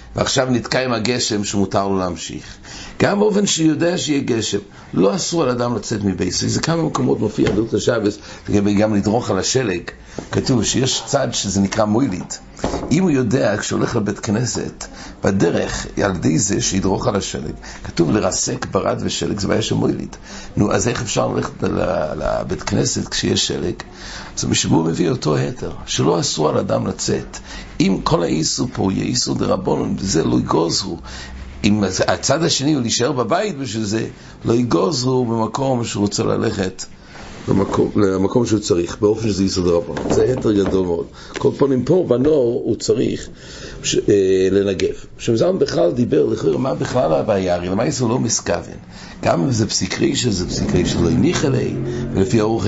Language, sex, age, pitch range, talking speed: English, male, 60-79, 95-125 Hz, 155 wpm